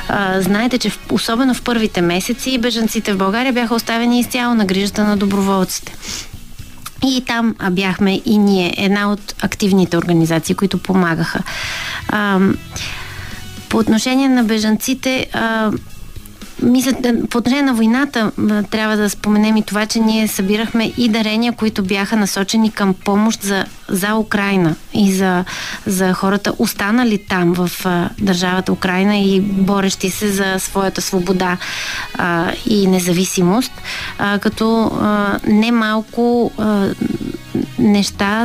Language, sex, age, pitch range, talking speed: Bulgarian, female, 30-49, 190-220 Hz, 125 wpm